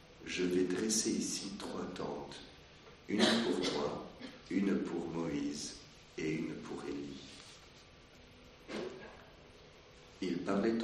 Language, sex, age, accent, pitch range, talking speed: French, male, 60-79, French, 75-95 Hz, 100 wpm